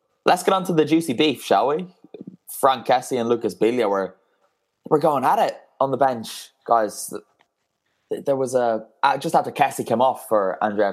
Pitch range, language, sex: 100-125 Hz, English, male